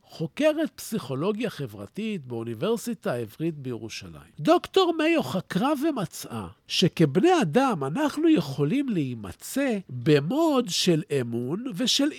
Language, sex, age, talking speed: Hebrew, male, 50-69, 95 wpm